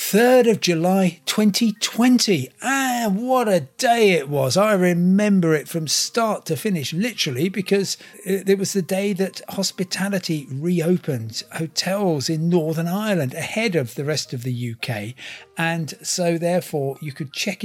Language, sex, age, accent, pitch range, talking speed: English, male, 50-69, British, 130-190 Hz, 145 wpm